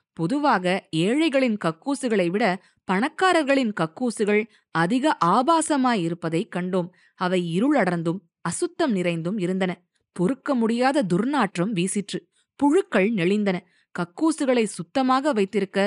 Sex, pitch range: female, 185-265 Hz